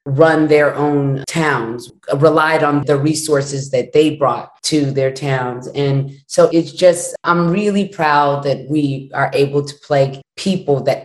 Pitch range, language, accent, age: 140-165 Hz, English, American, 30-49